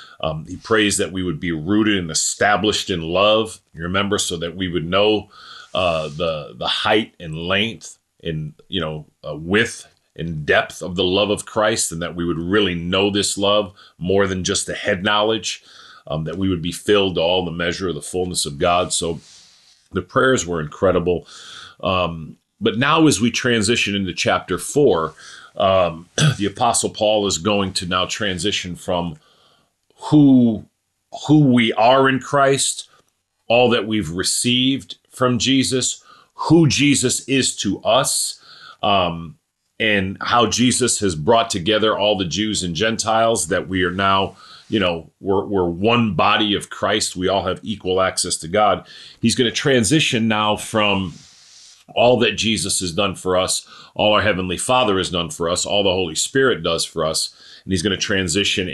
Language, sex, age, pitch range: English, male, 40-59, 90-110 Hz